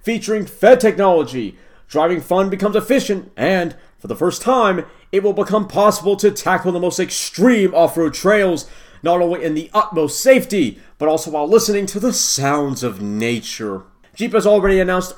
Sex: male